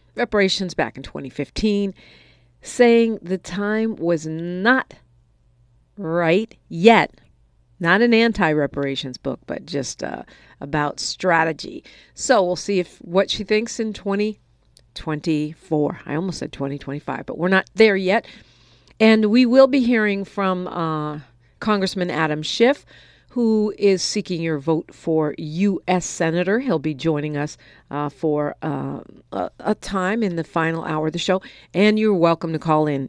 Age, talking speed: 50-69, 145 wpm